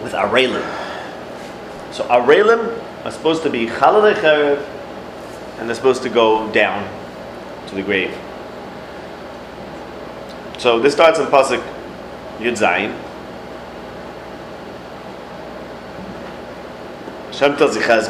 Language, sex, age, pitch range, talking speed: English, male, 30-49, 115-145 Hz, 85 wpm